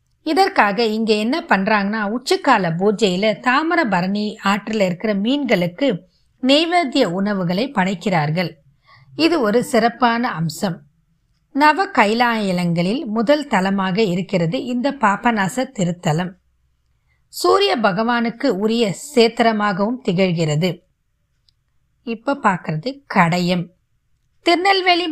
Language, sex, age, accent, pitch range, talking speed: Tamil, female, 20-39, native, 185-250 Hz, 80 wpm